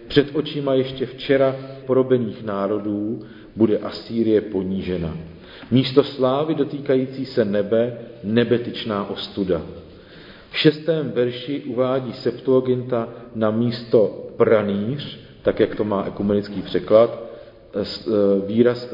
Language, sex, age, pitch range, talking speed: Czech, male, 50-69, 110-140 Hz, 100 wpm